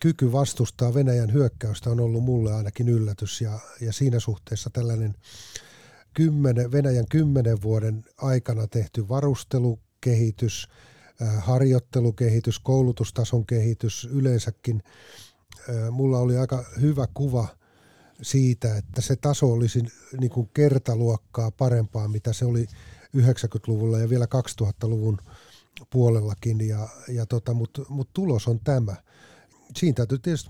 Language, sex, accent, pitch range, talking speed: Finnish, male, native, 115-135 Hz, 115 wpm